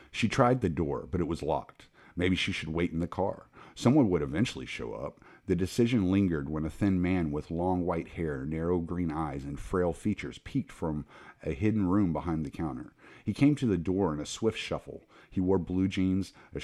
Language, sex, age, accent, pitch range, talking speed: English, male, 50-69, American, 80-105 Hz, 215 wpm